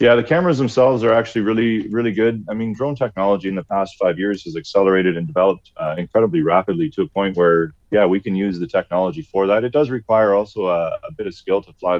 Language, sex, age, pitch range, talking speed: English, male, 30-49, 90-110 Hz, 240 wpm